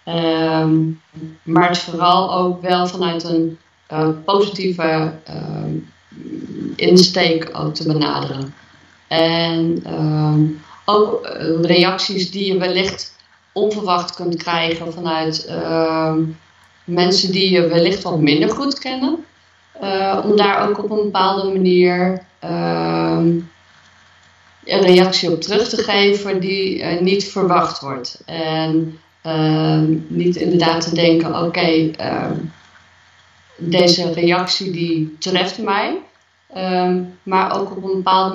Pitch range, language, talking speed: 165-195 Hz, Dutch, 105 wpm